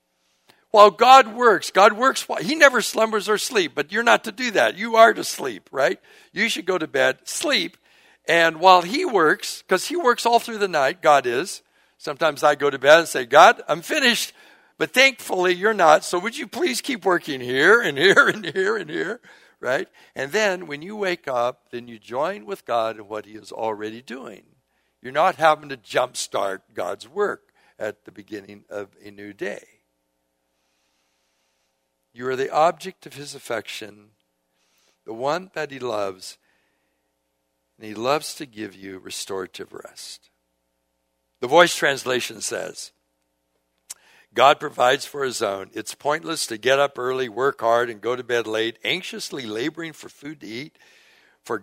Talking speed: 170 wpm